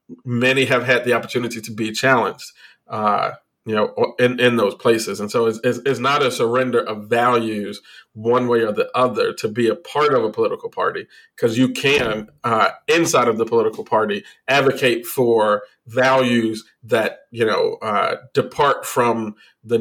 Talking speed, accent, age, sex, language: 175 wpm, American, 40-59, male, English